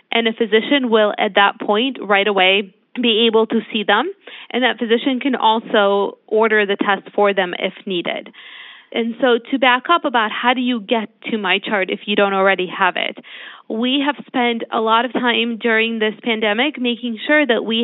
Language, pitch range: English, 215-255 Hz